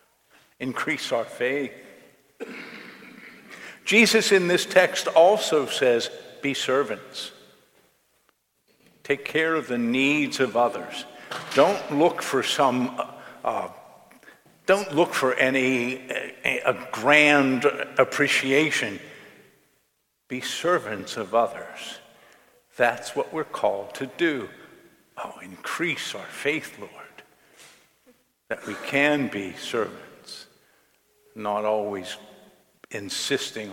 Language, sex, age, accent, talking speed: English, male, 50-69, American, 95 wpm